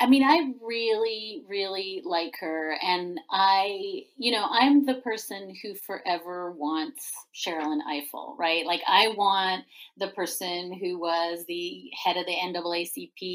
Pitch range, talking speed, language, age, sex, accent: 175-230 Hz, 145 wpm, English, 30-49, female, American